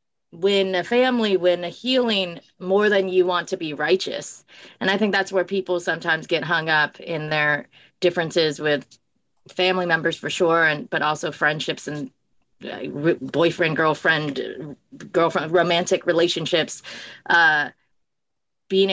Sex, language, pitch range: female, English, 170-195 Hz